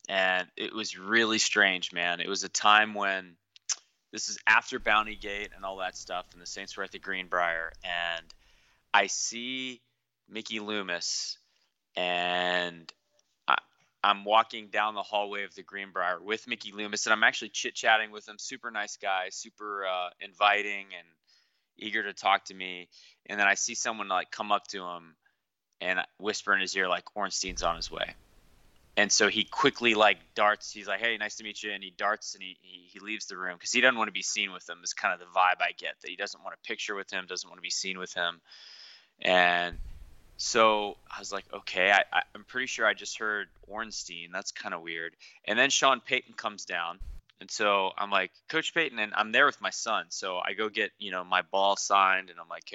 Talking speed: 210 wpm